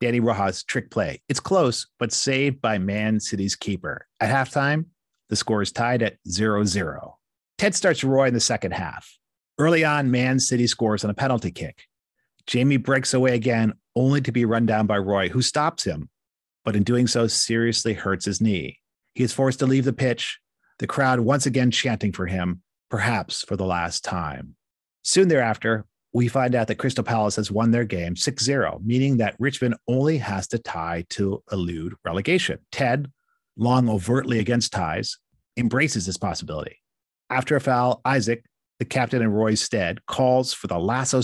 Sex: male